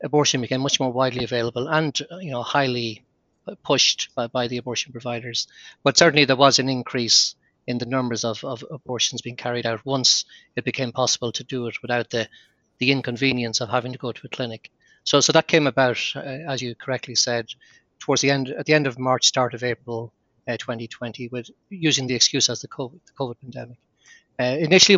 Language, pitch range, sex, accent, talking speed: English, 120-145 Hz, male, Irish, 205 wpm